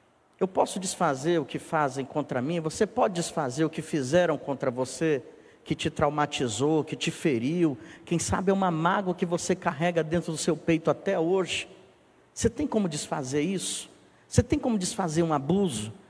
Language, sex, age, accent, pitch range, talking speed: Portuguese, male, 50-69, Brazilian, 145-185 Hz, 175 wpm